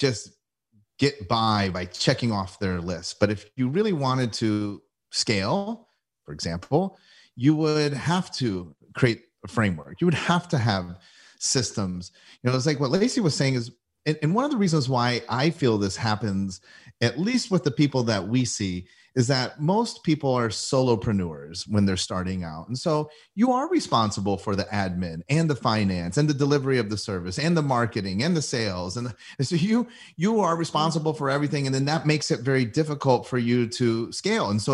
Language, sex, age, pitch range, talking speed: English, male, 30-49, 105-145 Hz, 190 wpm